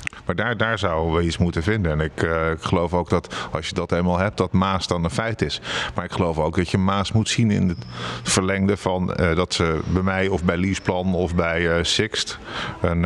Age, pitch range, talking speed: 50-69, 85-100 Hz, 240 wpm